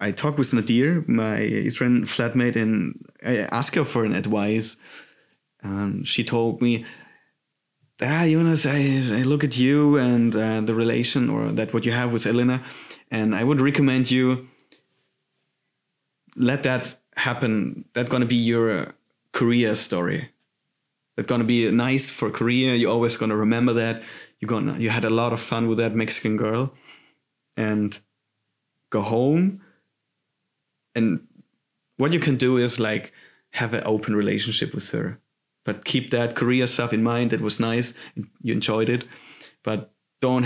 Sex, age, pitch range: male, 30-49, 110-130 Hz